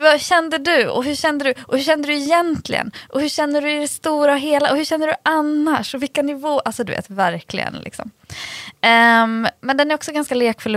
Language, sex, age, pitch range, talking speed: Swedish, female, 20-39, 185-245 Hz, 195 wpm